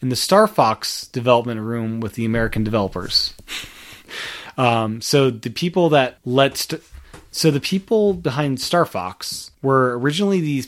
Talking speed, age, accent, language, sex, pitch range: 145 wpm, 30-49, American, English, male, 115-150 Hz